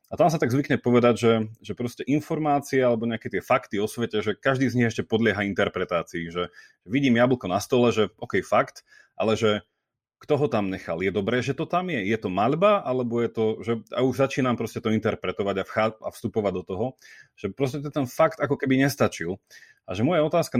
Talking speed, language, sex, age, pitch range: 205 wpm, Slovak, male, 30-49, 110-130 Hz